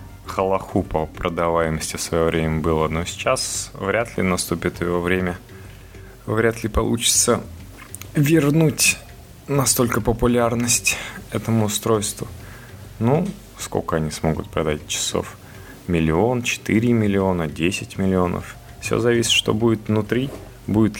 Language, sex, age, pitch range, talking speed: Russian, male, 20-39, 85-105 Hz, 110 wpm